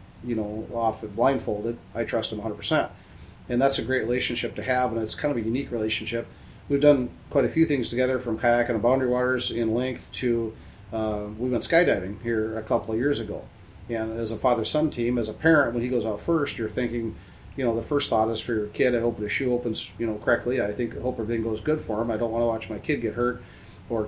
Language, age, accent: English, 30-49, American